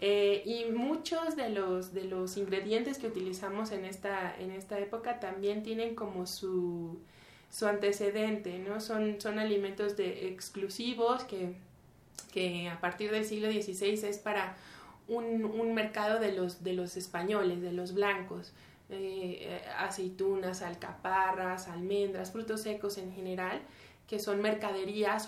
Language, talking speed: Spanish, 140 wpm